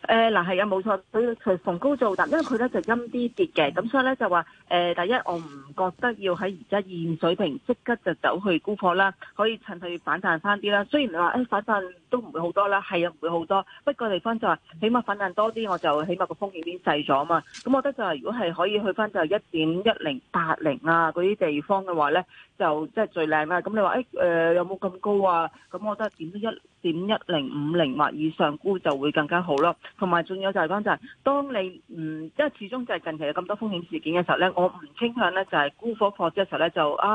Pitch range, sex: 170-215 Hz, female